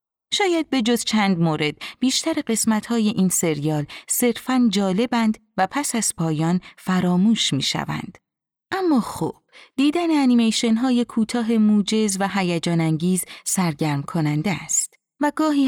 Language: Persian